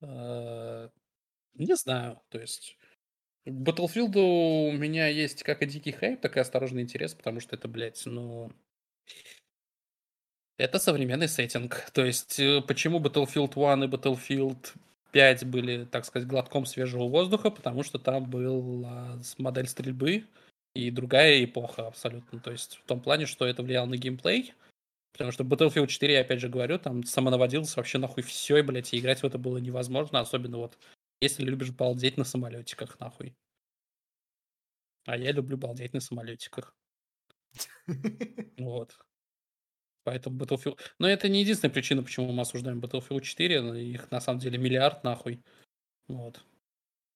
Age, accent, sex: 20-39, native, male